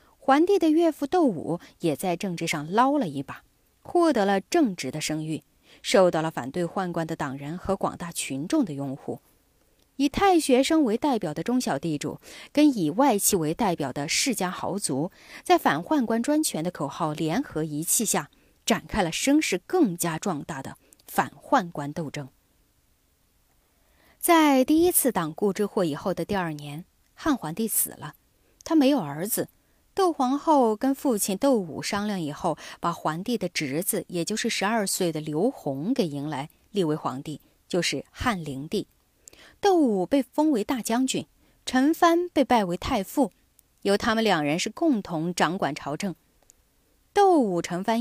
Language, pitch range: Chinese, 160-260 Hz